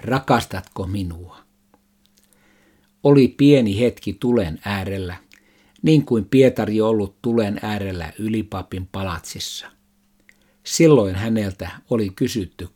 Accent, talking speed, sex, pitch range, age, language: native, 90 wpm, male, 90-110 Hz, 60-79, Finnish